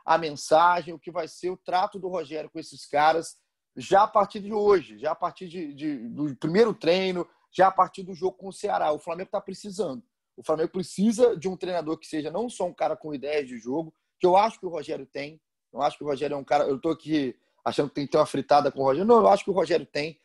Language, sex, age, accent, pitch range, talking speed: Portuguese, male, 30-49, Brazilian, 155-205 Hz, 260 wpm